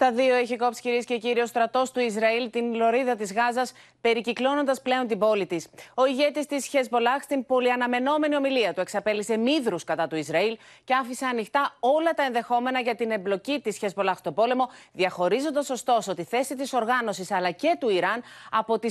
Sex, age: female, 30-49